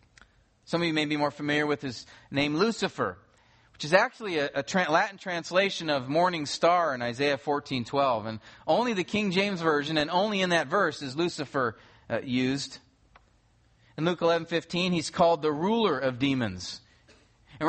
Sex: male